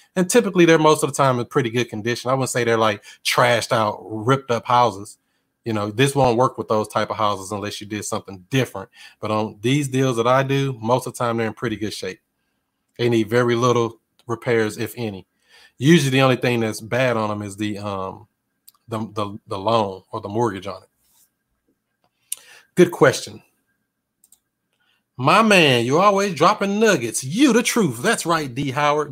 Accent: American